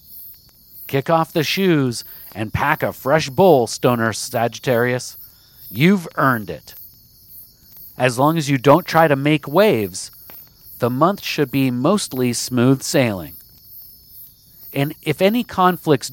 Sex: male